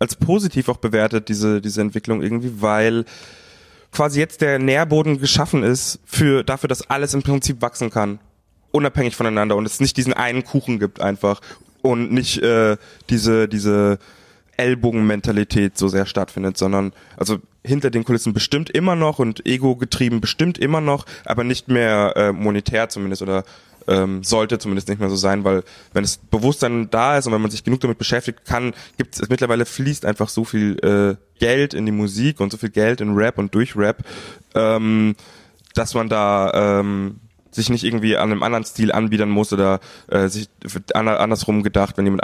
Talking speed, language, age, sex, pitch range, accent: 175 wpm, German, 20-39, male, 100-120 Hz, German